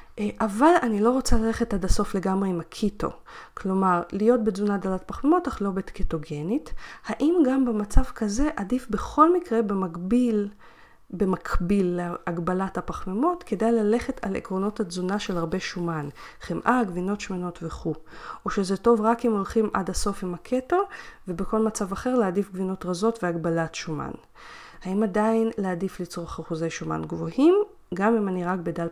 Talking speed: 145 wpm